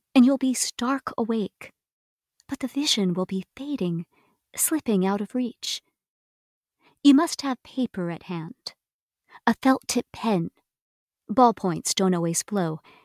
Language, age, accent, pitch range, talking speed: English, 40-59, American, 195-265 Hz, 130 wpm